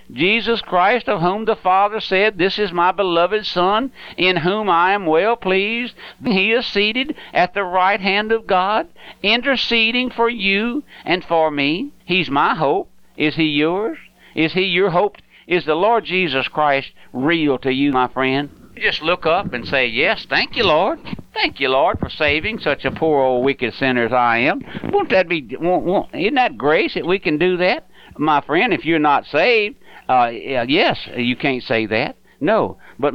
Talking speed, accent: 190 wpm, American